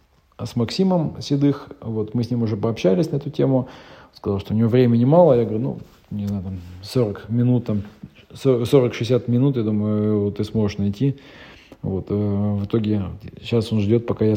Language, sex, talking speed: Russian, male, 170 wpm